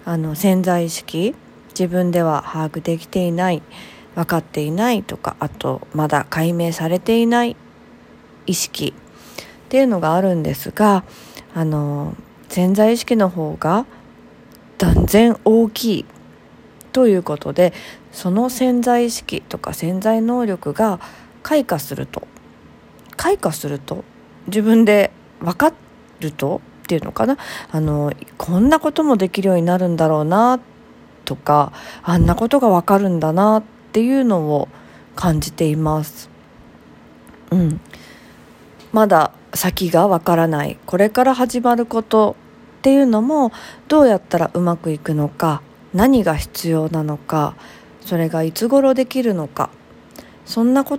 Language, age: Japanese, 40-59